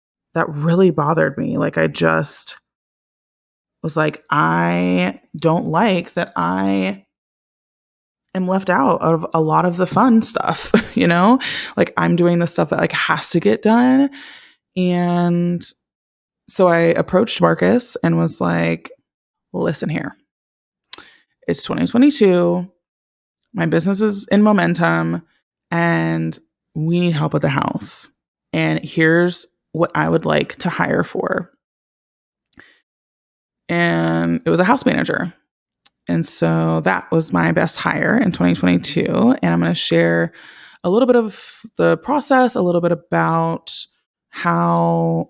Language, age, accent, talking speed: English, 20-39, American, 130 wpm